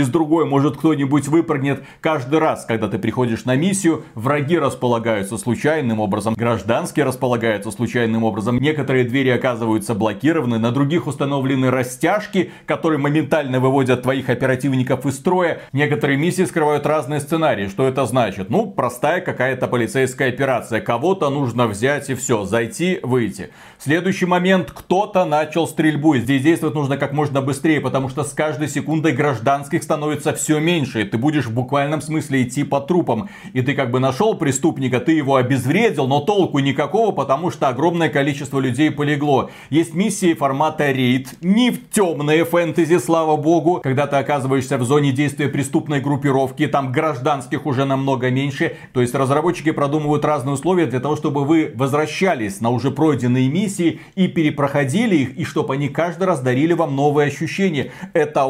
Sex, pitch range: male, 130-160 Hz